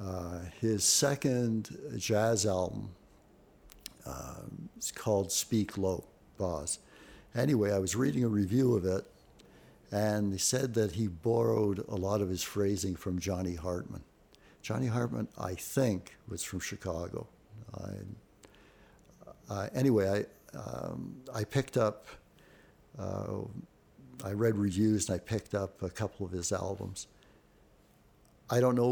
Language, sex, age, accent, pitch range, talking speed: English, male, 60-79, American, 100-120 Hz, 135 wpm